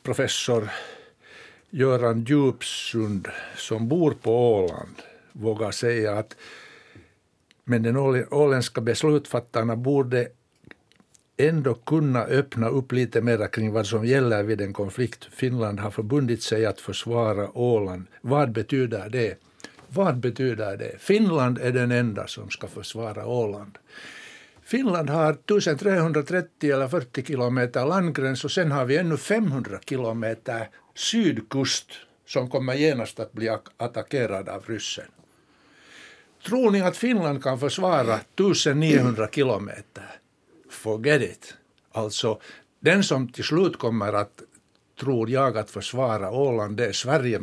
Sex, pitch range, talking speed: male, 110-145 Hz, 120 wpm